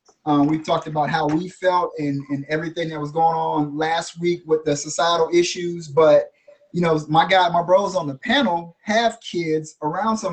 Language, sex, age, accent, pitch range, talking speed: English, male, 20-39, American, 145-170 Hz, 190 wpm